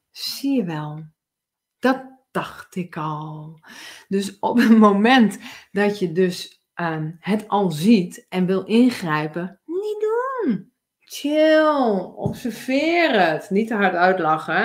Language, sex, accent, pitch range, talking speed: Dutch, female, Dutch, 180-245 Hz, 125 wpm